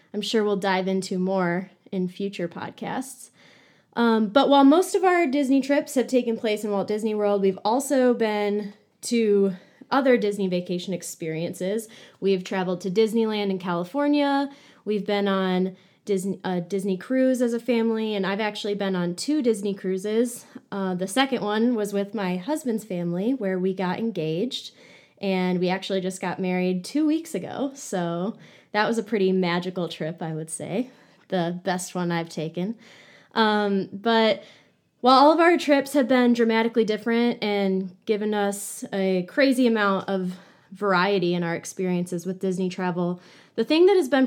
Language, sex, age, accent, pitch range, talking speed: English, female, 20-39, American, 185-240 Hz, 165 wpm